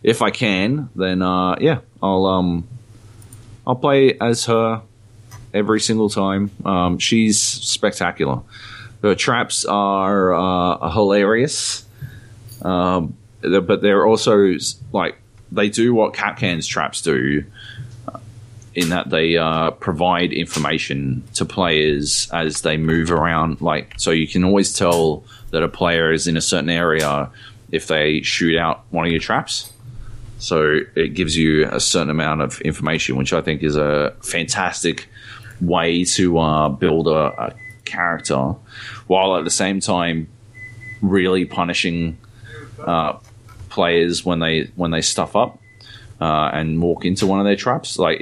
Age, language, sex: 30-49, English, male